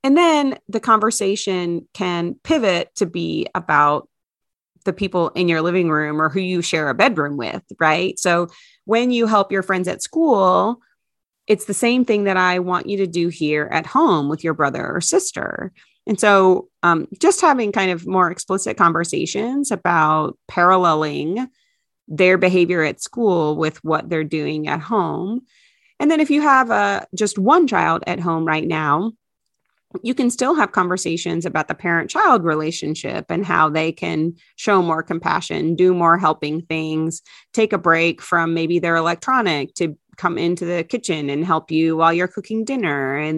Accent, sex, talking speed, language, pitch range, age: American, female, 170 wpm, English, 160-205 Hz, 30-49